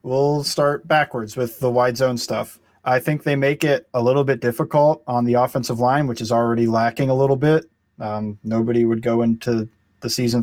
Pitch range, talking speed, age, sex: 115-145 Hz, 200 wpm, 20-39, male